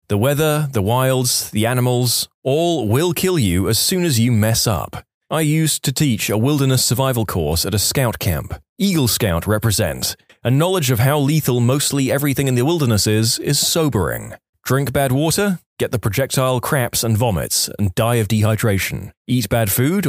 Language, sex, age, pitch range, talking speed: English, male, 20-39, 110-145 Hz, 180 wpm